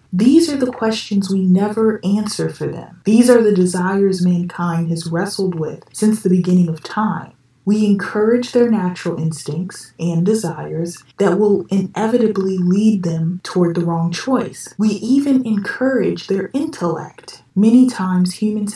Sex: female